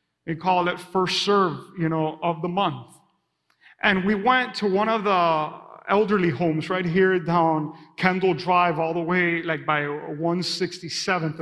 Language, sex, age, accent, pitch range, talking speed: English, male, 40-59, American, 170-205 Hz, 160 wpm